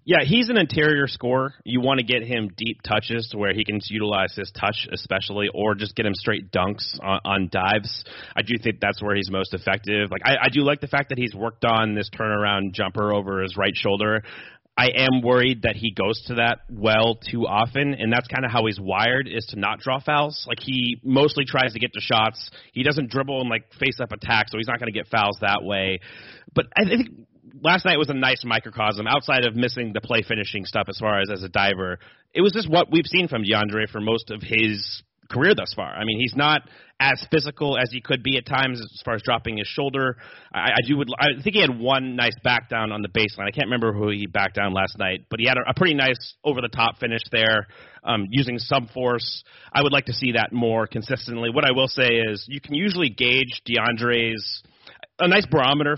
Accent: American